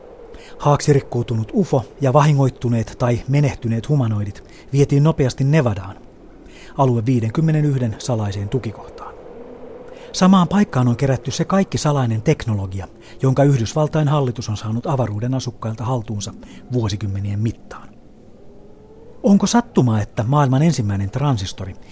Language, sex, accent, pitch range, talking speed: Finnish, male, native, 105-140 Hz, 105 wpm